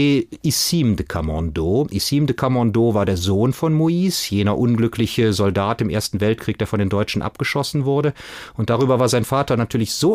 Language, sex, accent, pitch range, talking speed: German, male, German, 100-130 Hz, 175 wpm